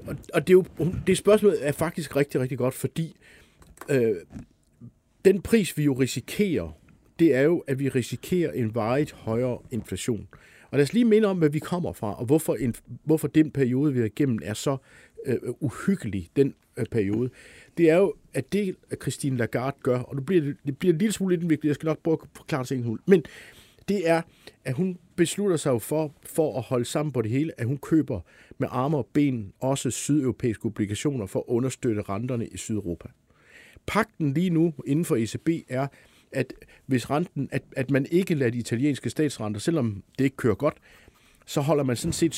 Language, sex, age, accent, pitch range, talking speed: Danish, male, 50-69, native, 120-155 Hz, 195 wpm